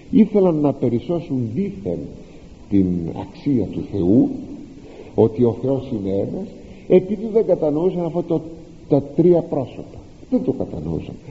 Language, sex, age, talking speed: Greek, male, 50-69, 120 wpm